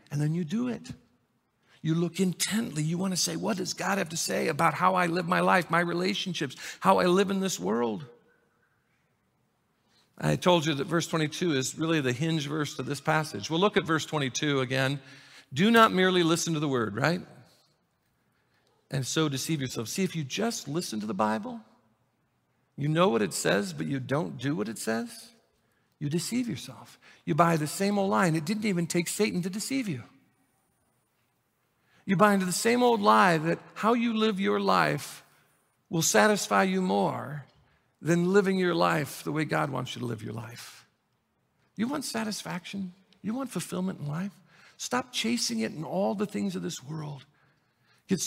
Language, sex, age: English, male, 50-69